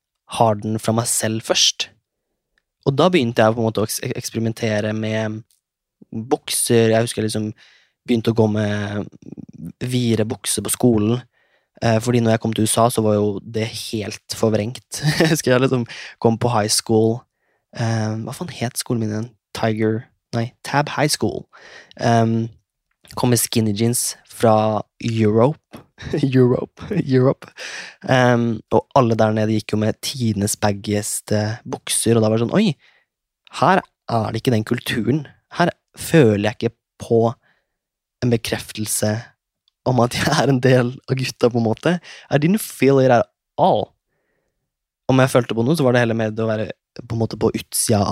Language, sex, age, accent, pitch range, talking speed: English, male, 20-39, Swedish, 110-125 Hz, 155 wpm